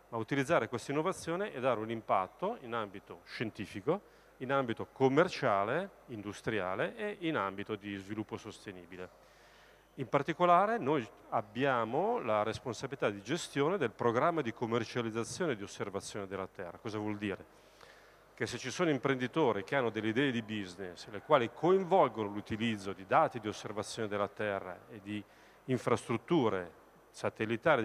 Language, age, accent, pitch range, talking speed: Italian, 40-59, native, 110-145 Hz, 140 wpm